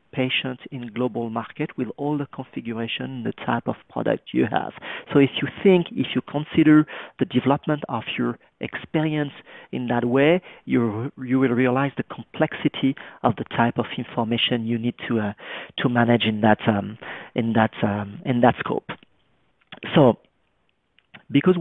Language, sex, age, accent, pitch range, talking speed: English, male, 40-59, French, 115-145 Hz, 160 wpm